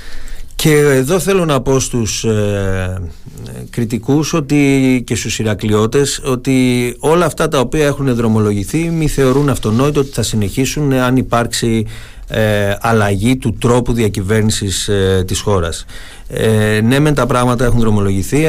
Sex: male